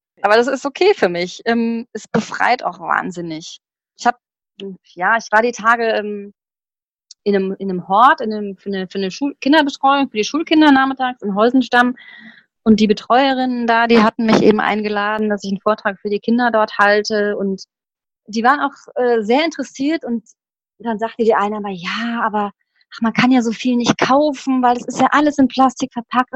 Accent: German